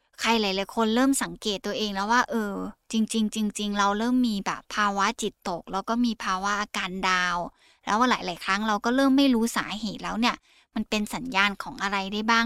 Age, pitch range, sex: 20-39, 200-245 Hz, female